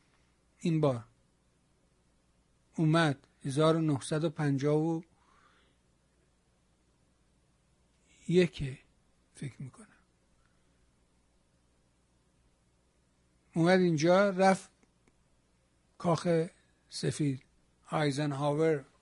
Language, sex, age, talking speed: Persian, male, 60-79, 45 wpm